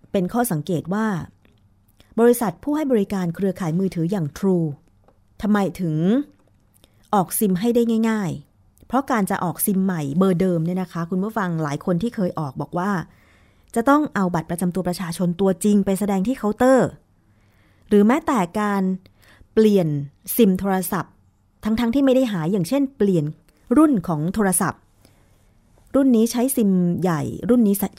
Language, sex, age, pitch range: Thai, female, 30-49, 150-210 Hz